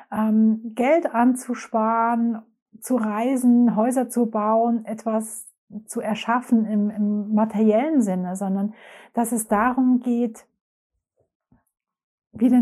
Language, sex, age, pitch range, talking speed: German, female, 30-49, 210-245 Hz, 95 wpm